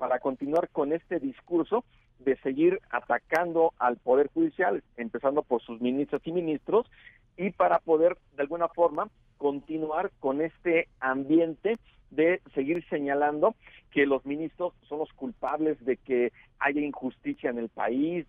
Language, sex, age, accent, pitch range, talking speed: Spanish, male, 50-69, Mexican, 130-175 Hz, 140 wpm